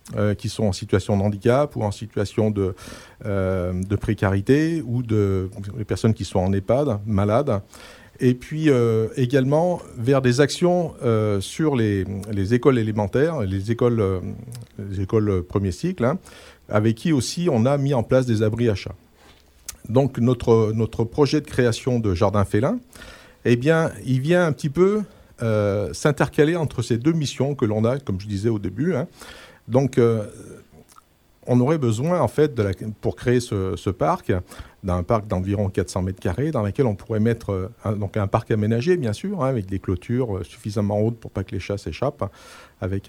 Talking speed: 185 wpm